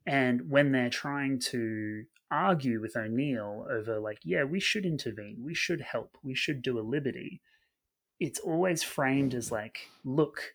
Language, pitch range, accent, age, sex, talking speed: English, 110-135 Hz, Australian, 30-49, male, 160 wpm